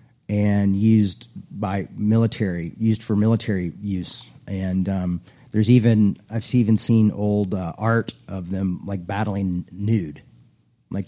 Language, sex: English, male